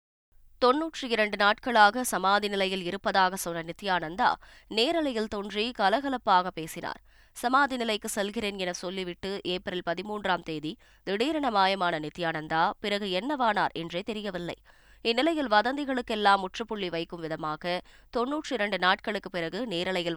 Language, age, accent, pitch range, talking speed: Tamil, 20-39, native, 175-225 Hz, 105 wpm